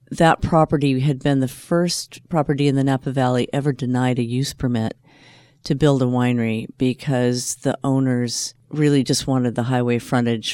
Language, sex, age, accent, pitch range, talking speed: English, female, 50-69, American, 120-145 Hz, 165 wpm